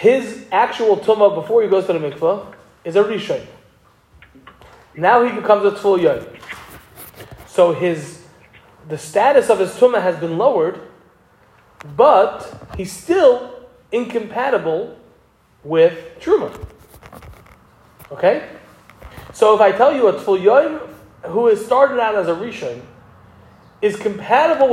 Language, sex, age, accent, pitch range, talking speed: English, male, 20-39, American, 195-295 Hz, 120 wpm